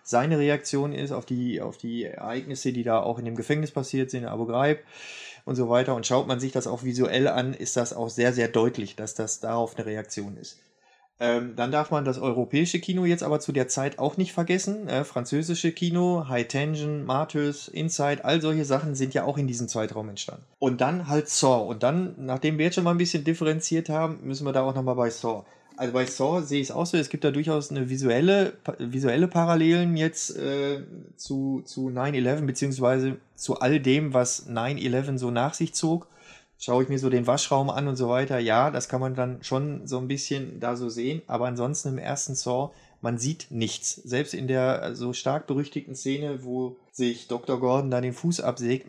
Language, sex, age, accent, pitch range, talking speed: German, male, 30-49, German, 125-150 Hz, 205 wpm